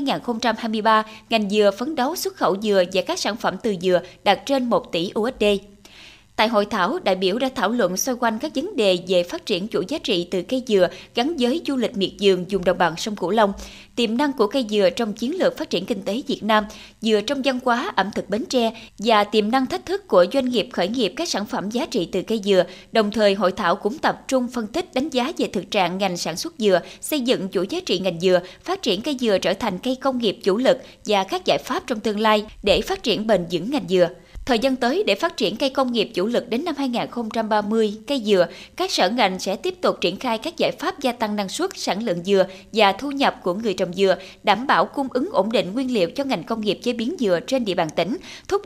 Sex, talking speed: female, 255 wpm